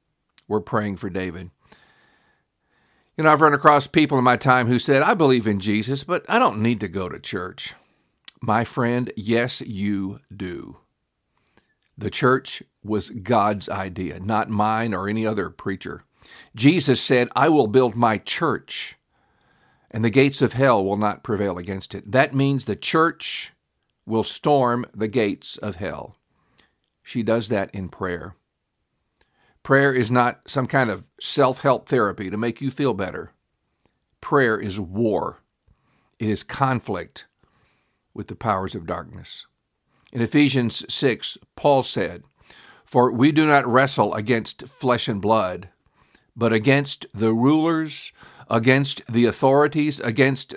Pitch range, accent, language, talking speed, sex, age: 105-135 Hz, American, English, 145 wpm, male, 50-69